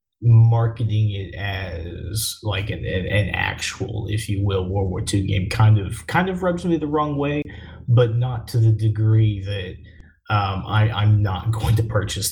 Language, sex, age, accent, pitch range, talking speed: English, male, 20-39, American, 100-115 Hz, 180 wpm